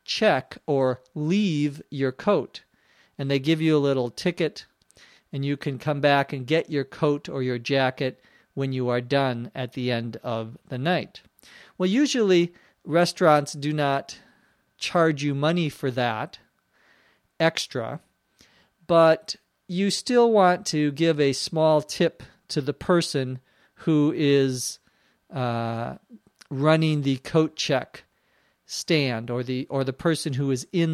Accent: American